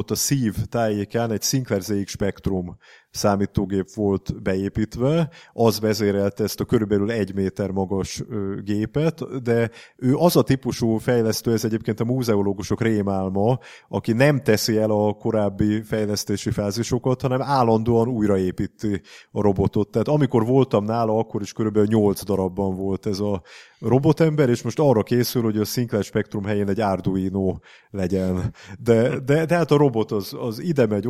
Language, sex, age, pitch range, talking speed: Hungarian, male, 30-49, 100-120 Hz, 150 wpm